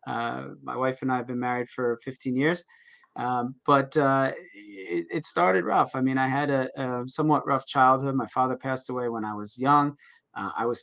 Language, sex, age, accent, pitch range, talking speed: English, male, 30-49, American, 120-145 Hz, 210 wpm